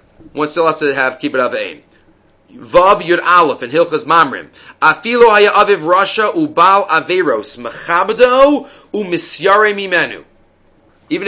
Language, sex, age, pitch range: English, male, 30-49, 170-240 Hz